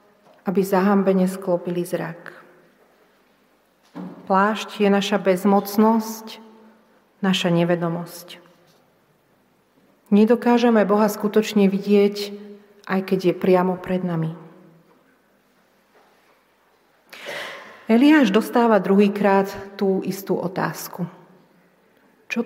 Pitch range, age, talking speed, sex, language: 190-215 Hz, 40-59, 70 wpm, female, Slovak